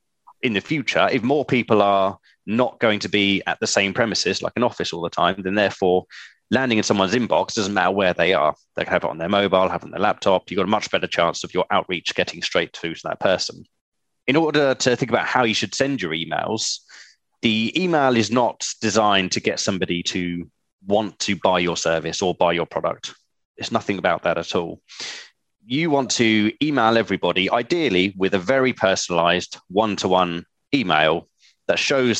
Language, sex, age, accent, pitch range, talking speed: English, male, 20-39, British, 90-125 Hz, 200 wpm